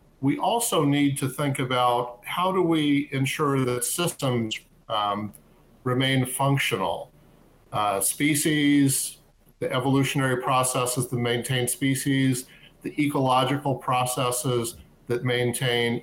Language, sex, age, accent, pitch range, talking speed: English, male, 50-69, American, 120-145 Hz, 105 wpm